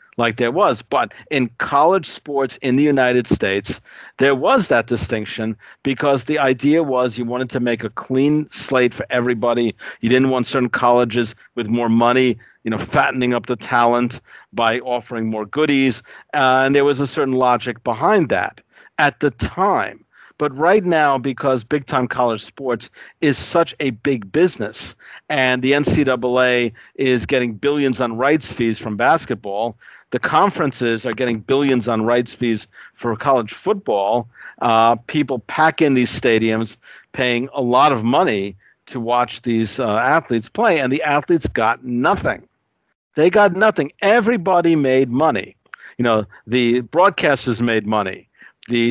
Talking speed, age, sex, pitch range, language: 155 wpm, 50-69, male, 115-135 Hz, English